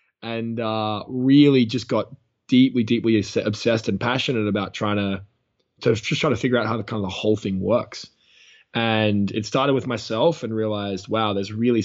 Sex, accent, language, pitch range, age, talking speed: male, Australian, English, 100-120 Hz, 20-39, 175 wpm